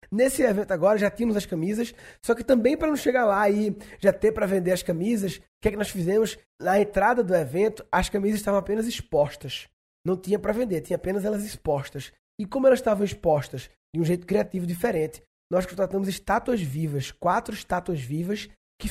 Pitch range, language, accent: 175-220 Hz, Portuguese, Brazilian